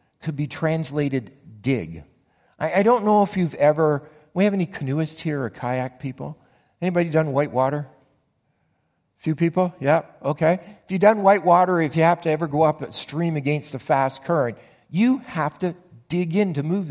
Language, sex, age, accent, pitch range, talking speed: English, male, 50-69, American, 135-175 Hz, 190 wpm